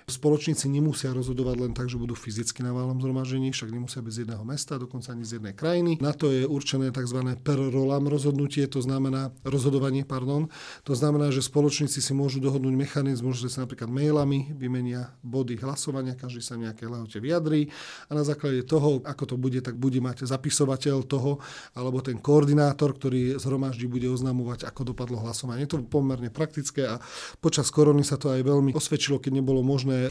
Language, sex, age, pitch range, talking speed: Slovak, male, 40-59, 125-150 Hz, 180 wpm